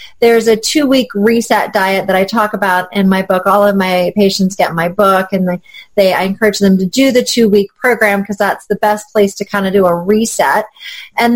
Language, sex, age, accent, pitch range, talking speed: English, female, 30-49, American, 195-240 Hz, 220 wpm